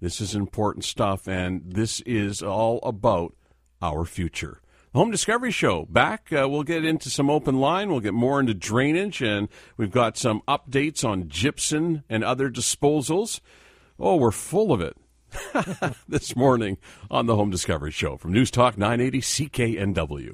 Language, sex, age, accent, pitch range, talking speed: English, male, 50-69, American, 95-125 Hz, 160 wpm